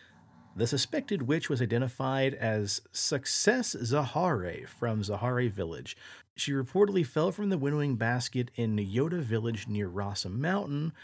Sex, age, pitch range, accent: male, 40-59, 110-155 Hz, American